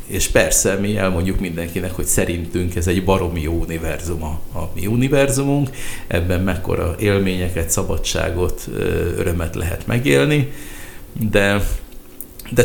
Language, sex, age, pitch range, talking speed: Hungarian, male, 50-69, 90-110 Hz, 120 wpm